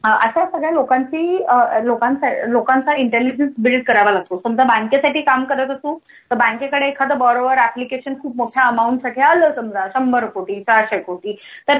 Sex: female